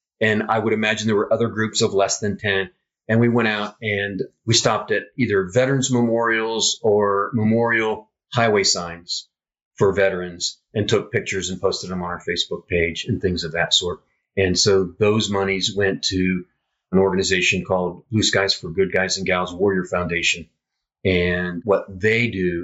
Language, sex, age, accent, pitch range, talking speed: English, male, 40-59, American, 95-115 Hz, 175 wpm